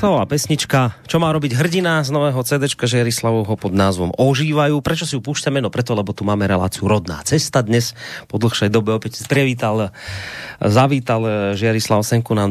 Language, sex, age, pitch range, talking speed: Slovak, male, 30-49, 105-135 Hz, 175 wpm